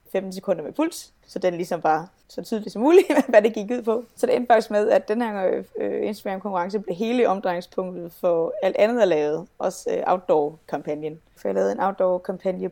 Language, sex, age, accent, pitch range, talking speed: Danish, female, 20-39, native, 175-220 Hz, 210 wpm